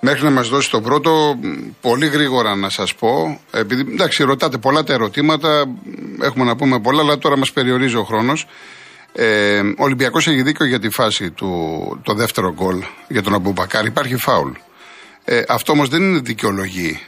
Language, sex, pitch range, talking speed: Greek, male, 105-160 Hz, 170 wpm